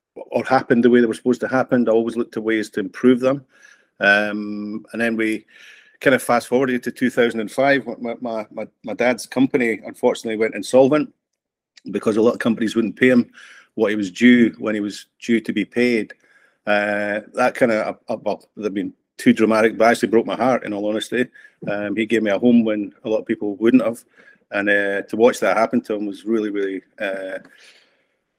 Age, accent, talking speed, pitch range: 40-59, British, 205 wpm, 105-120 Hz